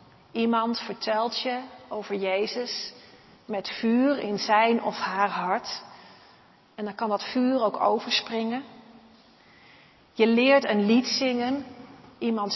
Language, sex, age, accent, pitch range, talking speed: Dutch, female, 40-59, Dutch, 195-230 Hz, 120 wpm